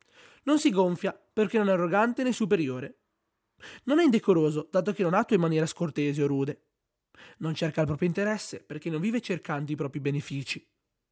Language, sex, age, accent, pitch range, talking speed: Italian, male, 20-39, native, 140-195 Hz, 180 wpm